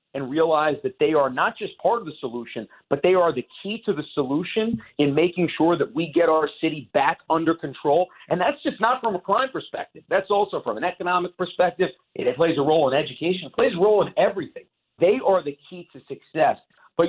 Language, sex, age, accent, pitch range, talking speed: English, male, 50-69, American, 125-165 Hz, 220 wpm